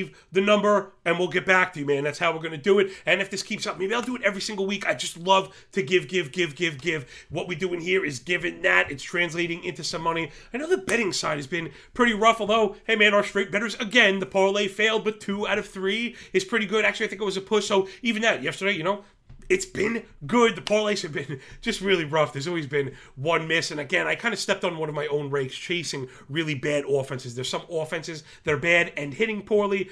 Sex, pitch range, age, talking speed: male, 160-205 Hz, 30-49, 260 wpm